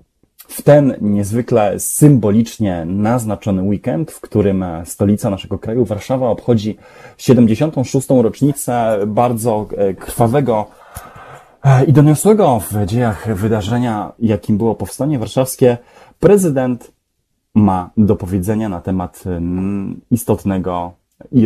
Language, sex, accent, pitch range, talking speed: Polish, male, native, 100-120 Hz, 95 wpm